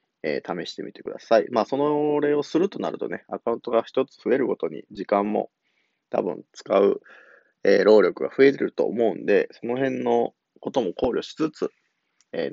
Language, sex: Japanese, male